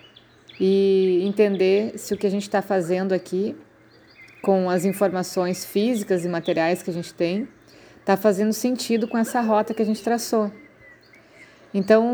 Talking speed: 155 wpm